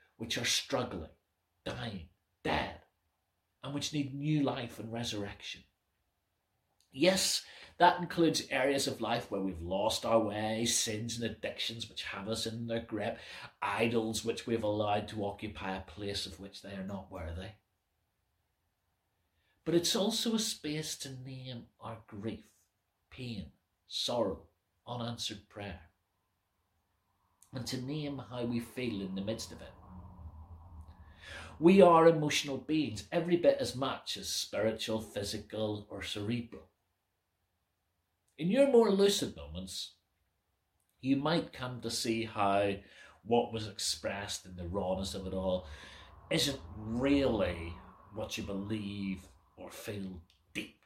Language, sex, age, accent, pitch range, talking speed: English, male, 40-59, British, 90-115 Hz, 130 wpm